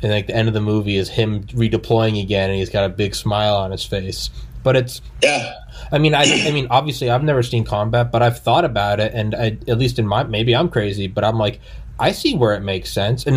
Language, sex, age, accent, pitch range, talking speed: English, male, 20-39, American, 110-130 Hz, 260 wpm